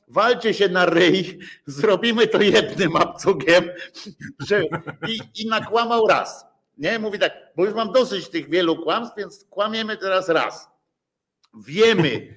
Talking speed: 130 wpm